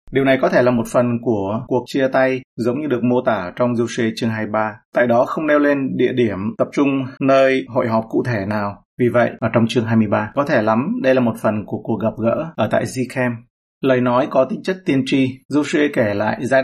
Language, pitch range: Vietnamese, 115-135 Hz